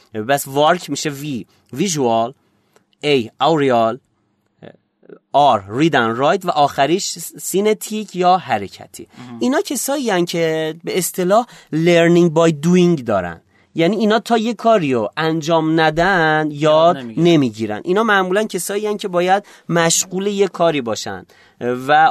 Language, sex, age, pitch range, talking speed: Persian, male, 30-49, 130-185 Hz, 125 wpm